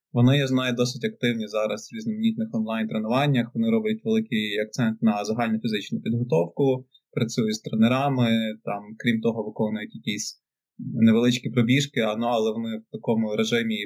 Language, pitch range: Ukrainian, 110-135 Hz